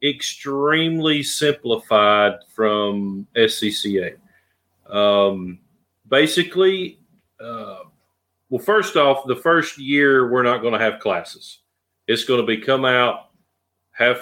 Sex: male